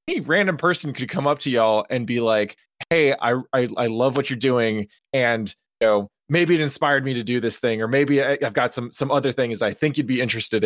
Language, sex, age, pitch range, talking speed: English, male, 20-39, 120-155 Hz, 250 wpm